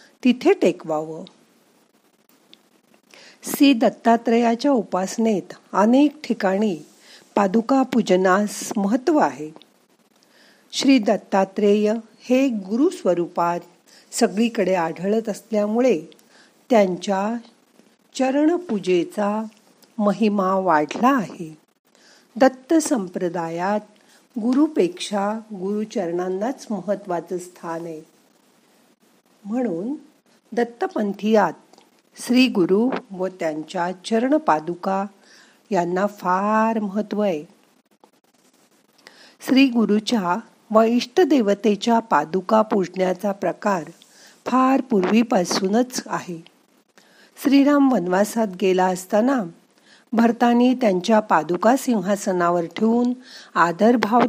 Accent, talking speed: native, 65 wpm